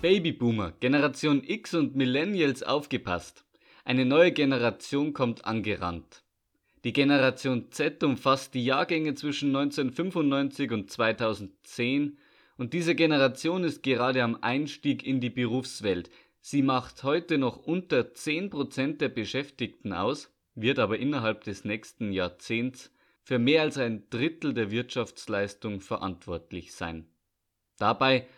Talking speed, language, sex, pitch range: 120 wpm, German, male, 110-140 Hz